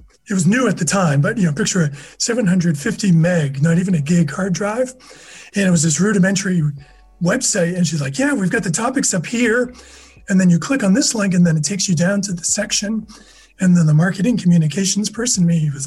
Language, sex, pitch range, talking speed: English, male, 175-215 Hz, 225 wpm